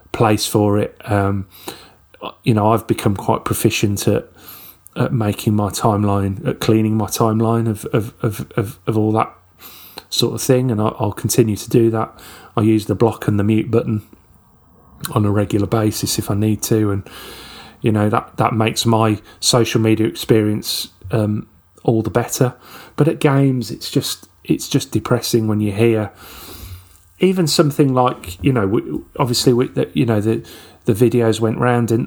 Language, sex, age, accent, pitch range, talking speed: English, male, 30-49, British, 105-120 Hz, 170 wpm